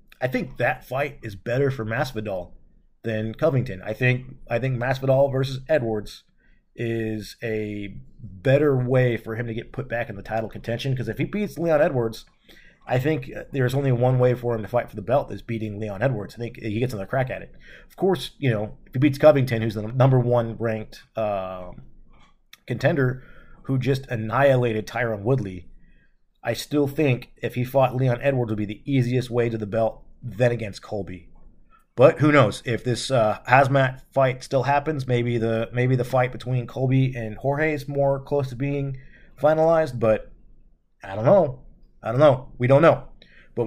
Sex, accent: male, American